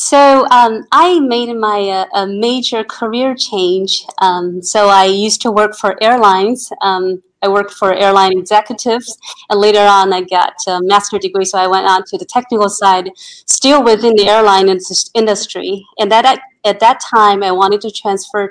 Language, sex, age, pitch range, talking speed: English, female, 30-49, 195-230 Hz, 180 wpm